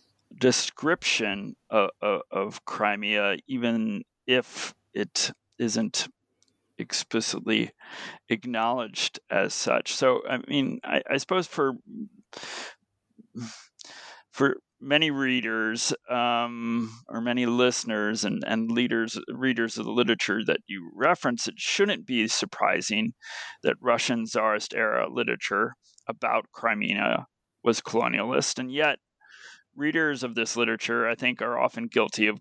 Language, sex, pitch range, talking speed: English, male, 115-135 Hz, 115 wpm